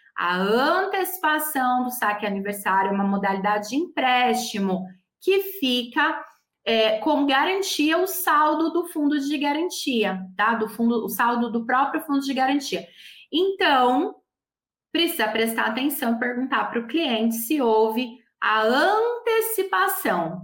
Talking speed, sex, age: 125 wpm, female, 20-39